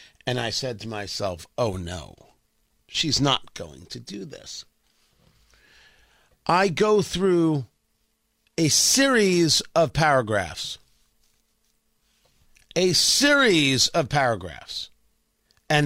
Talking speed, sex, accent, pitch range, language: 95 wpm, male, American, 145-195 Hz, English